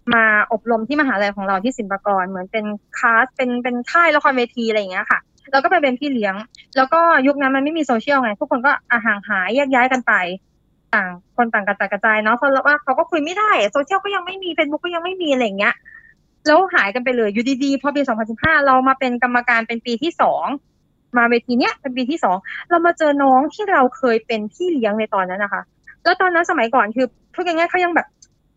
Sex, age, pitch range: female, 20-39, 230-330 Hz